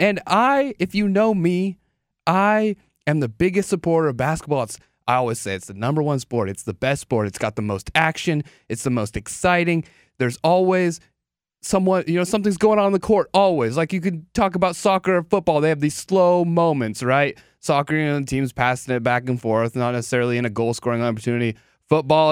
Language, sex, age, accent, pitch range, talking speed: English, male, 20-39, American, 135-195 Hz, 210 wpm